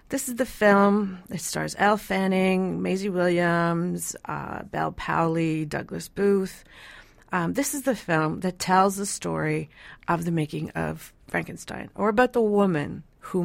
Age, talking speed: 40-59, 150 wpm